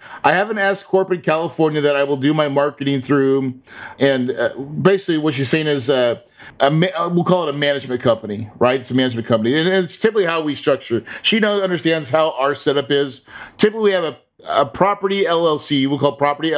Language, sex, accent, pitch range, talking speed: English, male, American, 130-175 Hz, 205 wpm